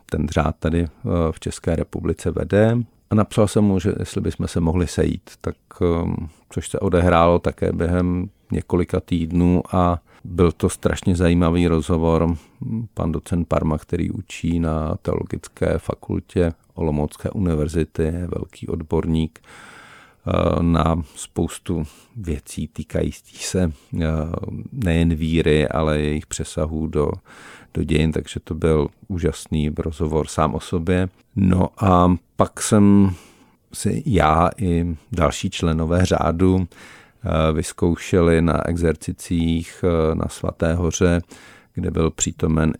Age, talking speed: 50-69, 120 wpm